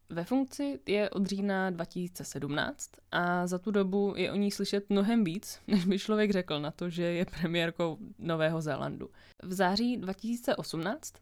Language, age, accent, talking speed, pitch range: Czech, 20-39, native, 160 wpm, 170-205 Hz